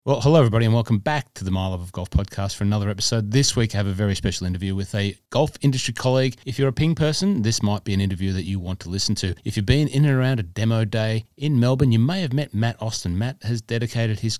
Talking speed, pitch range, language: 275 wpm, 100-120 Hz, English